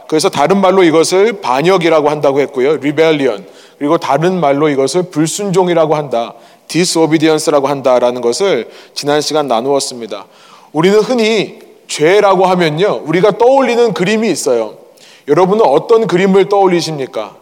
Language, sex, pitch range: Korean, male, 155-215 Hz